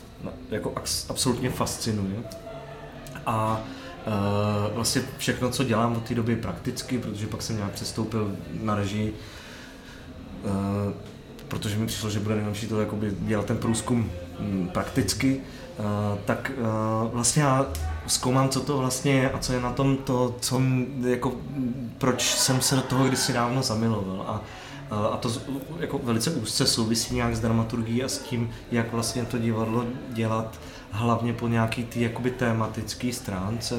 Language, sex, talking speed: Czech, male, 150 wpm